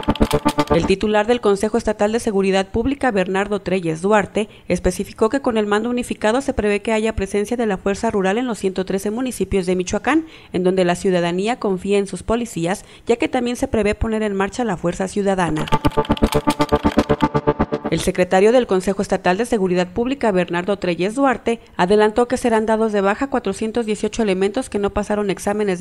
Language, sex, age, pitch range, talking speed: English, female, 40-59, 185-235 Hz, 170 wpm